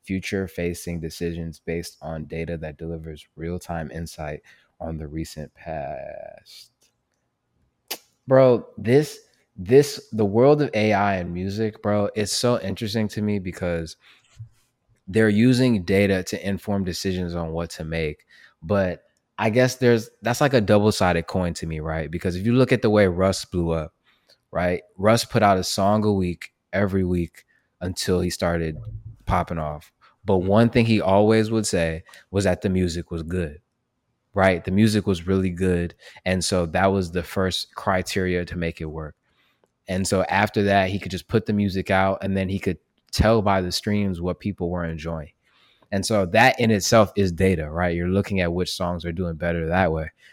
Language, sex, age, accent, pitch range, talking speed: English, male, 20-39, American, 85-105 Hz, 180 wpm